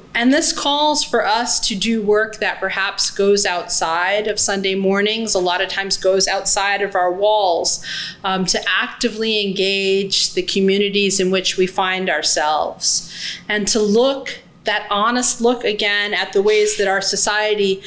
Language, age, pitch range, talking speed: English, 30-49, 185-220 Hz, 160 wpm